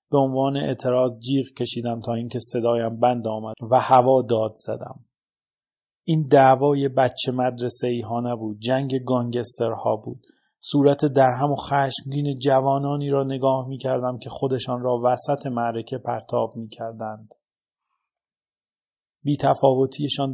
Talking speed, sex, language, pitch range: 120 wpm, male, Persian, 120-140 Hz